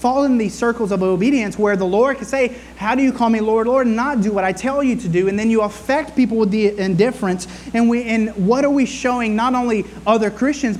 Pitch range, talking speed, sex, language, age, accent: 175-235 Hz, 255 wpm, male, English, 30-49, American